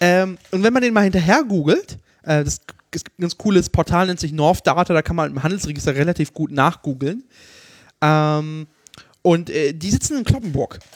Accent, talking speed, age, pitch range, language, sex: German, 190 wpm, 20-39, 155-200 Hz, German, male